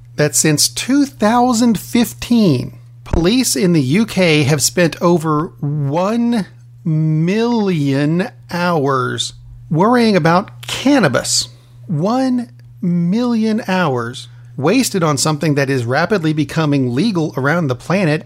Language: English